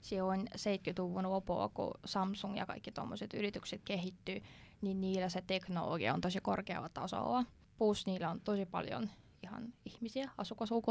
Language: Finnish